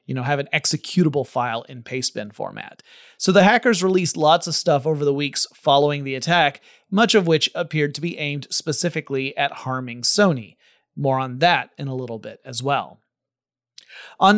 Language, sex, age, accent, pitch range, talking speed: English, male, 30-49, American, 135-175 Hz, 180 wpm